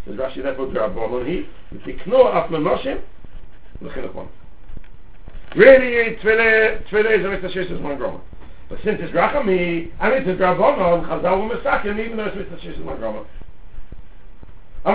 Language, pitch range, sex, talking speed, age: English, 145-230 Hz, male, 165 wpm, 60-79